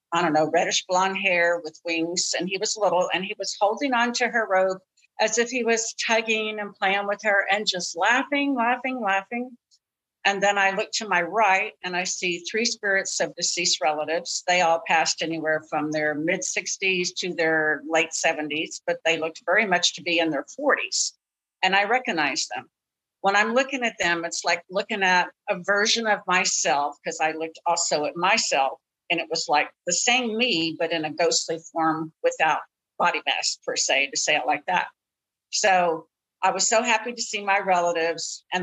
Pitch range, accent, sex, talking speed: 165-200 Hz, American, female, 195 wpm